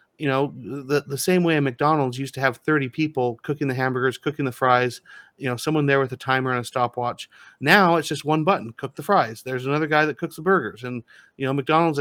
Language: English